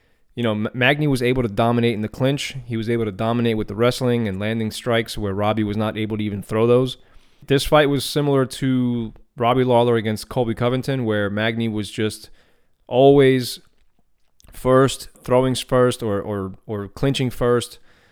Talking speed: 180 wpm